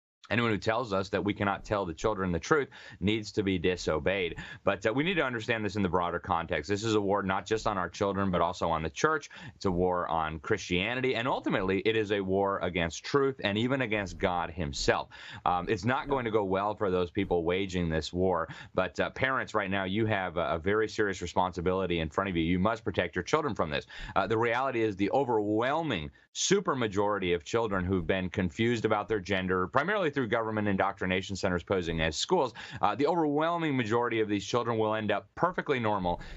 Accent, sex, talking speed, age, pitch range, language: American, male, 215 wpm, 30-49, 95-110 Hz, English